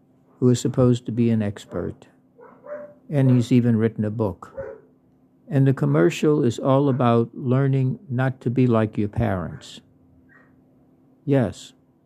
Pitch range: 110-130 Hz